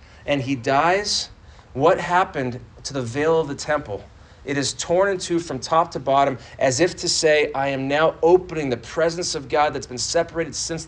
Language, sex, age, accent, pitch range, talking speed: English, male, 30-49, American, 130-170 Hz, 200 wpm